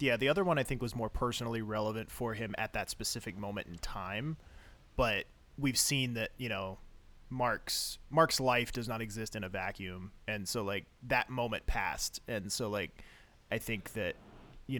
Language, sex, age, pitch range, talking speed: English, male, 30-49, 100-120 Hz, 185 wpm